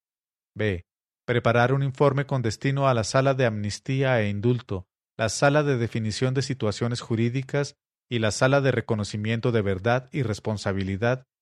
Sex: male